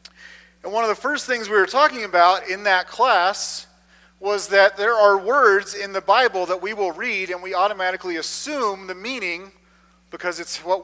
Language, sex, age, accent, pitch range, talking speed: English, male, 40-59, American, 155-195 Hz, 190 wpm